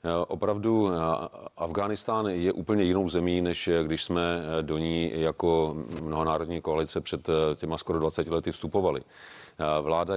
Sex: male